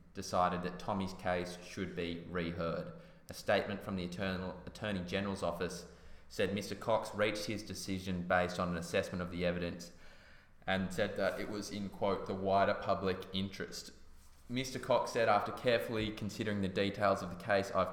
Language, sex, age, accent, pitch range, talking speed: English, male, 20-39, Australian, 90-105 Hz, 165 wpm